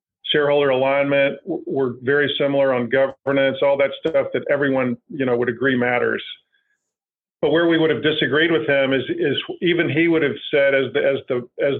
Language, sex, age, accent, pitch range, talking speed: English, male, 50-69, American, 130-150 Hz, 190 wpm